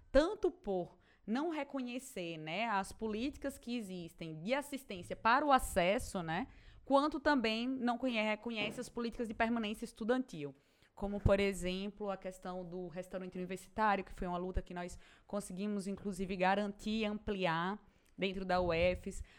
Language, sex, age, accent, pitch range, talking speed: Portuguese, female, 20-39, Brazilian, 185-235 Hz, 140 wpm